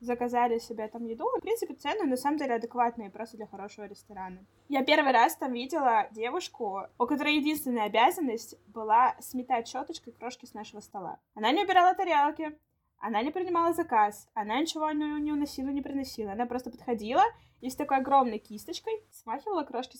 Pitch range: 215-295 Hz